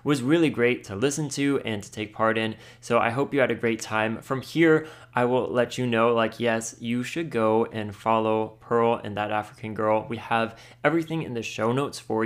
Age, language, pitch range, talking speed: 20-39, English, 110-130 Hz, 225 wpm